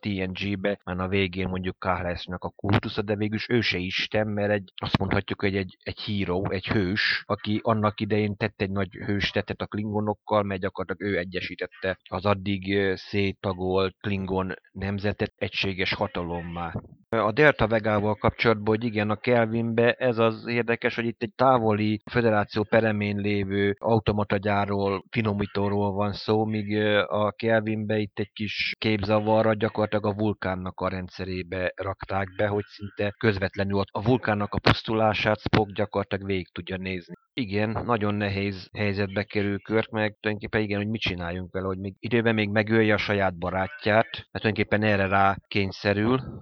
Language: Hungarian